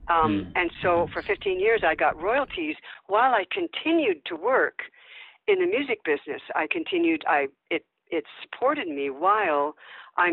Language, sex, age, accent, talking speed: English, female, 50-69, American, 155 wpm